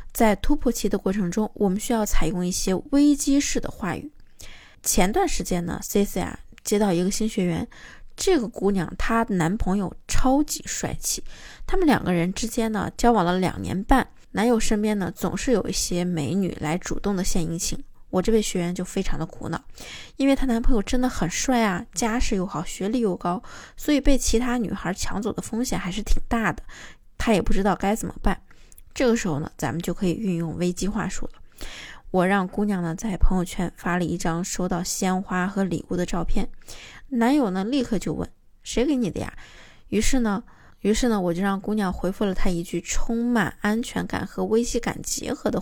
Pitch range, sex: 180-235 Hz, female